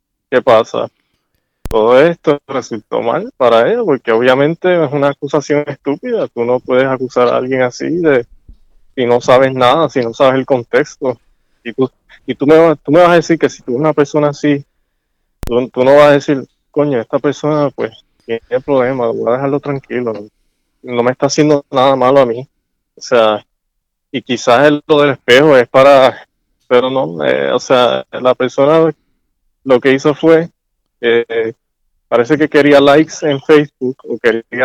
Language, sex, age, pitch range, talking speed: Spanish, male, 20-39, 120-145 Hz, 175 wpm